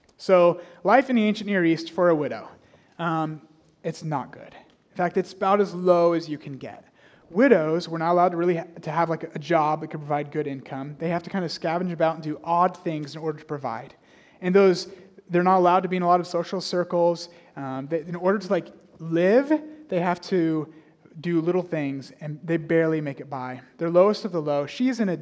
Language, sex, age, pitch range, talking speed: English, male, 30-49, 155-195 Hz, 230 wpm